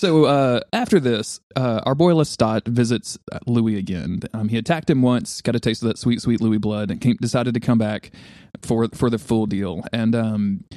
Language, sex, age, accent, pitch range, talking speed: English, male, 20-39, American, 110-125 Hz, 210 wpm